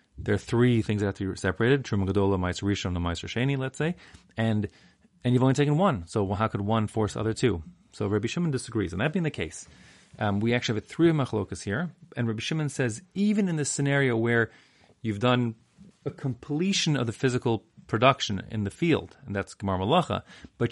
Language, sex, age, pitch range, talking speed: English, male, 30-49, 100-135 Hz, 210 wpm